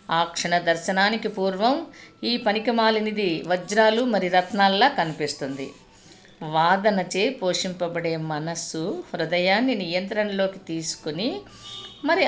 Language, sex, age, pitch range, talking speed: Telugu, female, 50-69, 175-230 Hz, 90 wpm